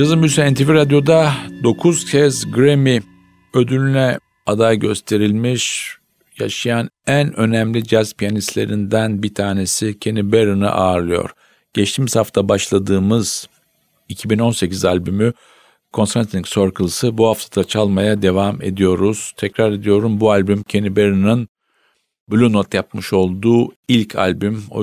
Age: 50-69